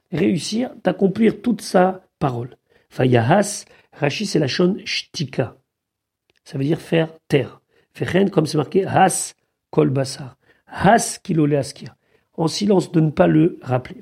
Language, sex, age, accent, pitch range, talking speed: French, male, 50-69, French, 145-205 Hz, 125 wpm